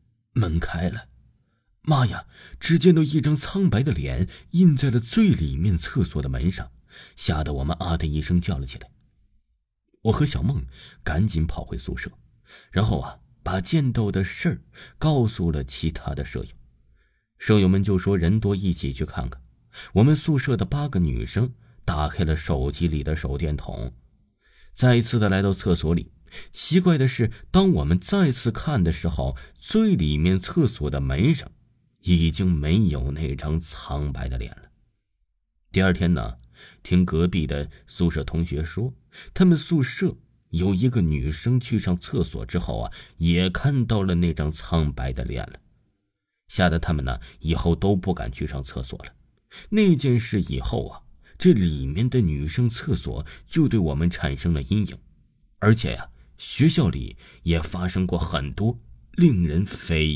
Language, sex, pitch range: Chinese, male, 75-120 Hz